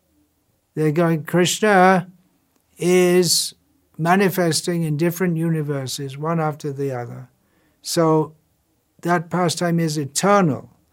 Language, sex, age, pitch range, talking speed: English, male, 60-79, 125-160 Hz, 95 wpm